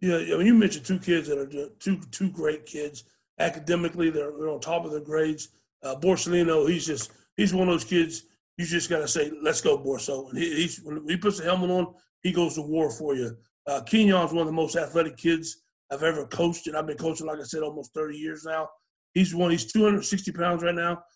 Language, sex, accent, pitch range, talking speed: English, male, American, 155-185 Hz, 235 wpm